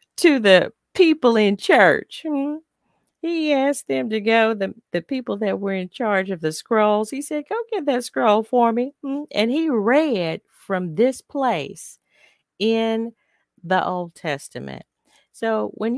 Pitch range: 145-225 Hz